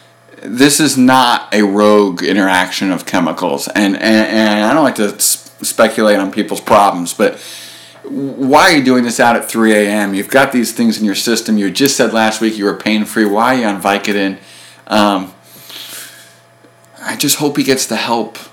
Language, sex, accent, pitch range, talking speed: English, male, American, 100-130 Hz, 180 wpm